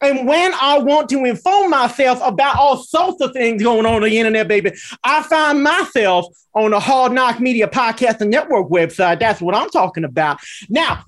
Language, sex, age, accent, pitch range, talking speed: English, male, 30-49, American, 205-275 Hz, 195 wpm